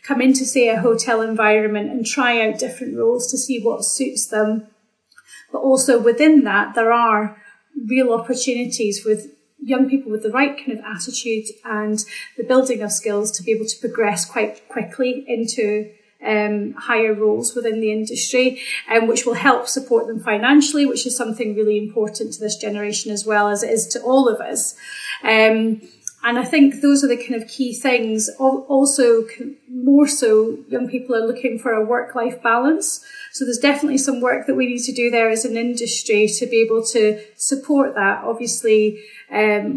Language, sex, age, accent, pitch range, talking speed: English, female, 30-49, British, 215-255 Hz, 185 wpm